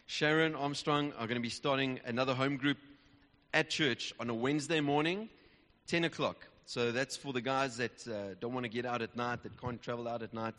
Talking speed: 215 wpm